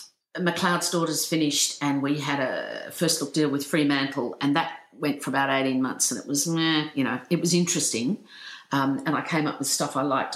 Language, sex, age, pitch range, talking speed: English, female, 50-69, 135-170 Hz, 215 wpm